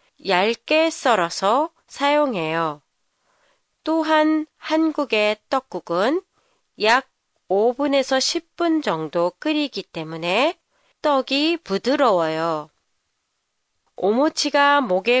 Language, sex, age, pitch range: Japanese, female, 30-49, 180-295 Hz